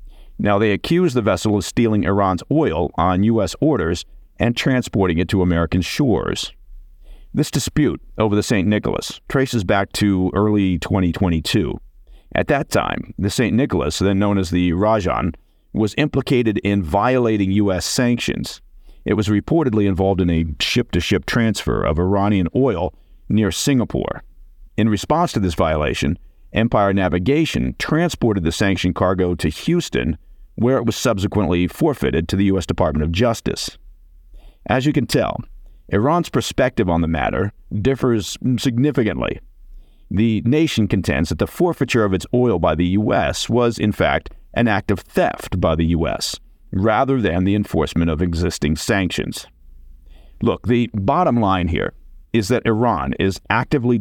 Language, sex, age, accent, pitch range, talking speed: English, male, 50-69, American, 90-115 Hz, 150 wpm